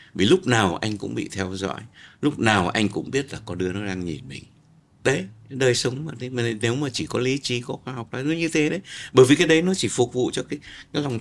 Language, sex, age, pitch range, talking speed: Vietnamese, male, 60-79, 100-135 Hz, 260 wpm